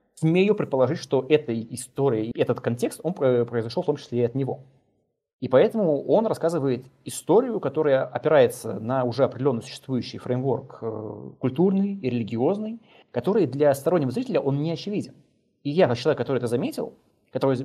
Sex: male